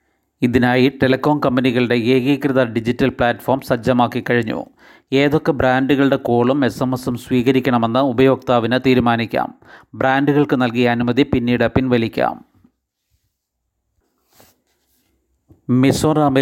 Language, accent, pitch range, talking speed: Malayalam, native, 125-135 Hz, 75 wpm